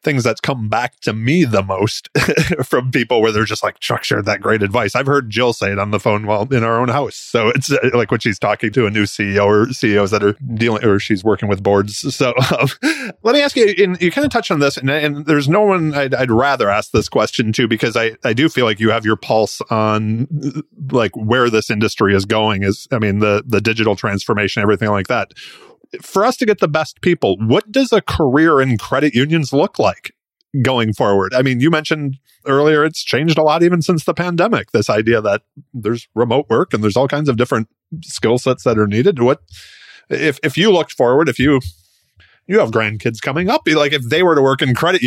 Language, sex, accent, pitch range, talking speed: English, male, American, 105-145 Hz, 230 wpm